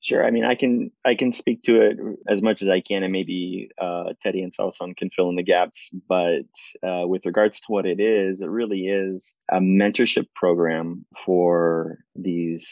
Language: English